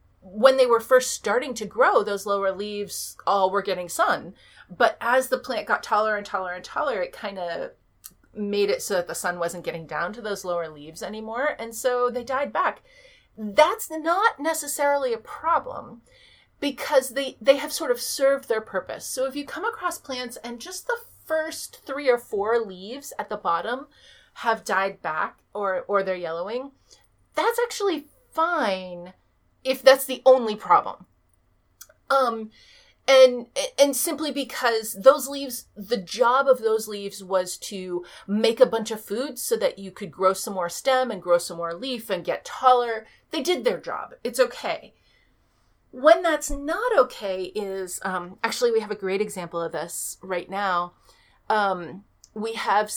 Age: 30-49